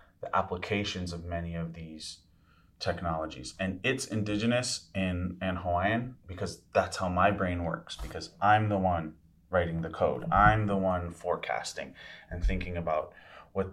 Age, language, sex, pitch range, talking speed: 30-49, English, male, 85-100 Hz, 145 wpm